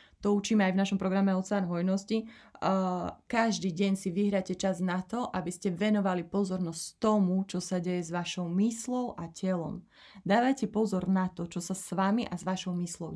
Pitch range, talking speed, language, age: 180-205 Hz, 185 wpm, Slovak, 30-49